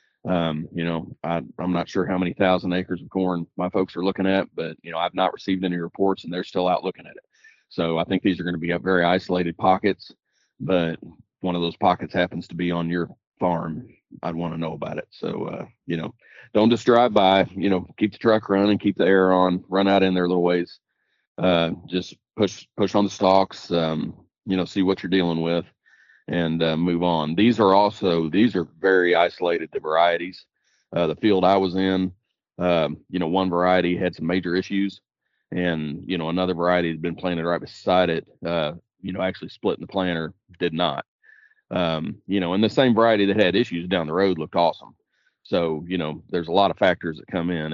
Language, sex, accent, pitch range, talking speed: English, male, American, 85-95 Hz, 220 wpm